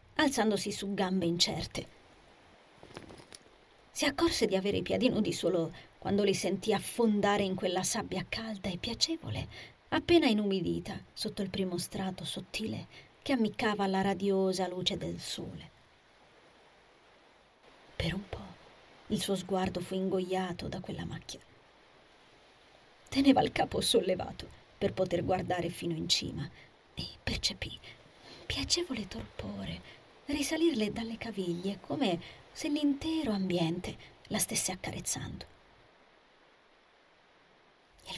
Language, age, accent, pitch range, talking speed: Italian, 30-49, native, 180-225 Hz, 115 wpm